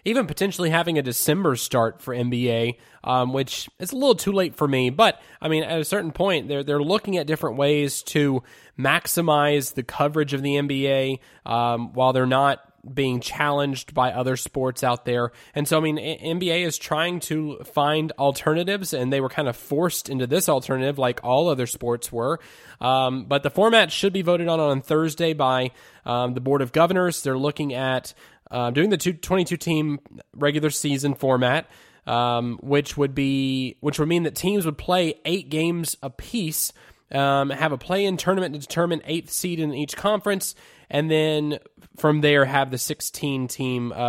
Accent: American